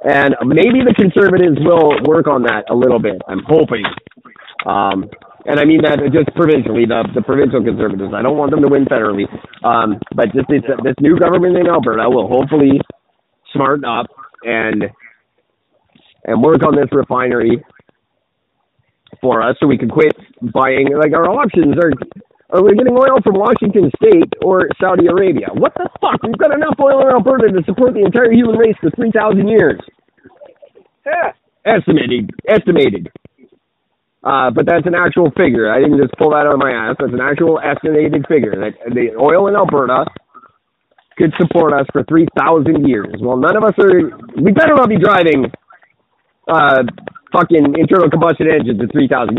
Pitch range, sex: 135-195 Hz, male